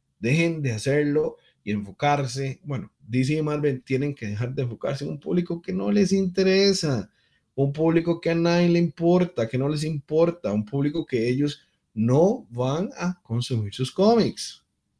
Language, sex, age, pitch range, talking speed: Spanish, male, 30-49, 115-170 Hz, 170 wpm